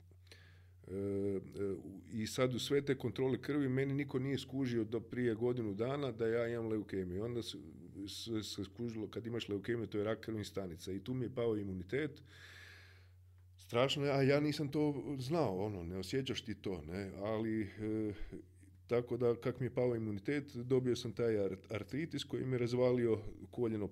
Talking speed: 165 wpm